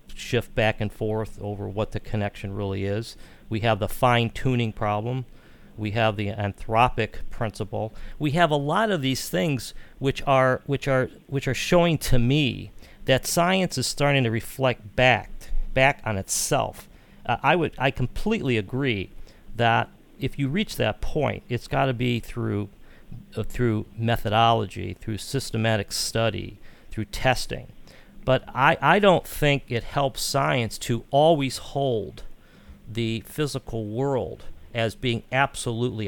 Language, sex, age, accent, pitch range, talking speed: English, male, 40-59, American, 105-135 Hz, 150 wpm